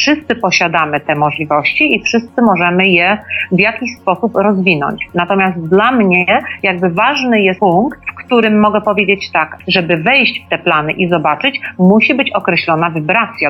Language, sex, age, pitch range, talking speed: Polish, female, 40-59, 185-225 Hz, 155 wpm